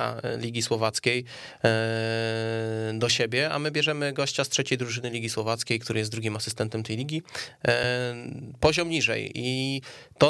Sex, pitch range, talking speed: male, 115-140 Hz, 135 wpm